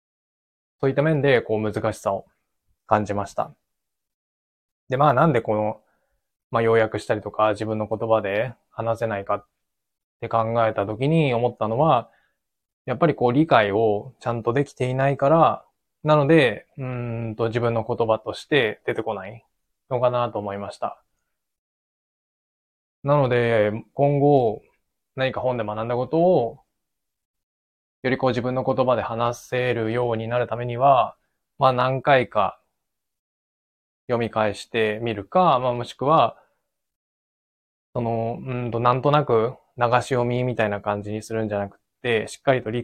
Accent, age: native, 20-39